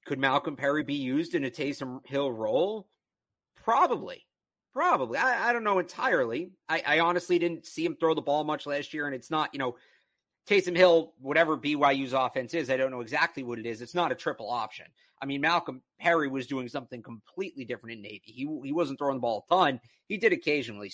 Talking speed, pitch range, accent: 210 wpm, 135-170 Hz, American